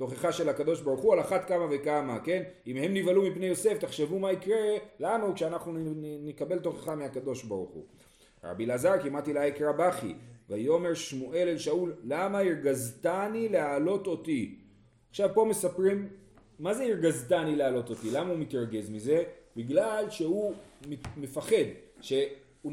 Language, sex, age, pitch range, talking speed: Hebrew, male, 40-59, 140-190 Hz, 145 wpm